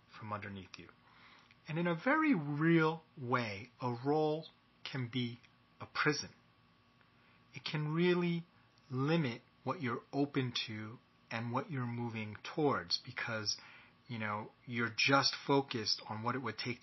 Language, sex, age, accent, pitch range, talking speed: English, male, 30-49, American, 115-140 Hz, 140 wpm